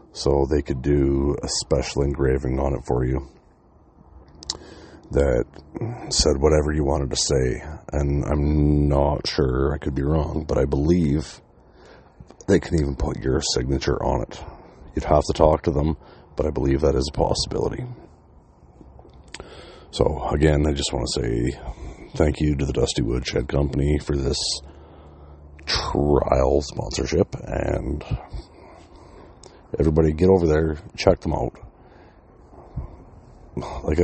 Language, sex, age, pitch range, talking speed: English, male, 40-59, 70-80 Hz, 135 wpm